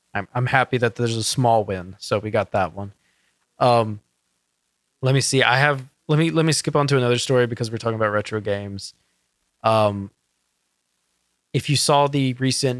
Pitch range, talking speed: 105-135 Hz, 190 wpm